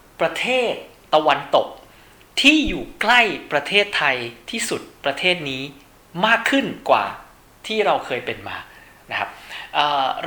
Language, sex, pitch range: Thai, male, 140-185 Hz